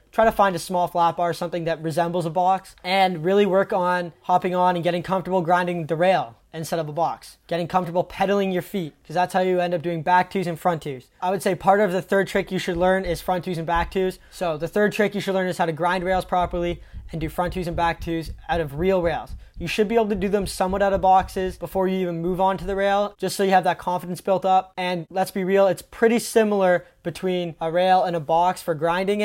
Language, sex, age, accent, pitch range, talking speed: English, male, 20-39, American, 170-195 Hz, 265 wpm